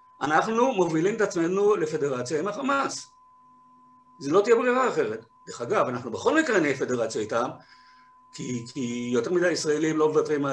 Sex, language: male, Hebrew